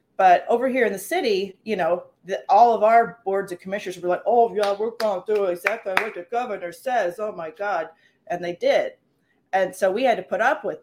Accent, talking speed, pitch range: American, 225 wpm, 175-205 Hz